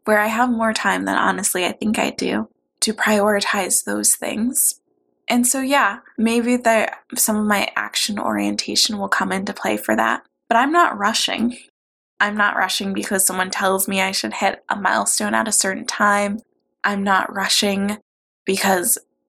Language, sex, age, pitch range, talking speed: English, female, 20-39, 185-215 Hz, 170 wpm